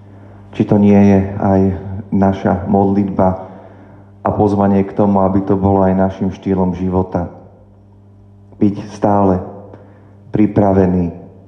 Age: 40-59